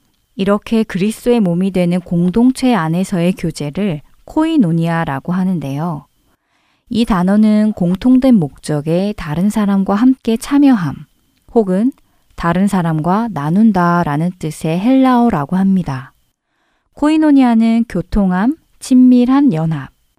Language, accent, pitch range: Korean, native, 165-225 Hz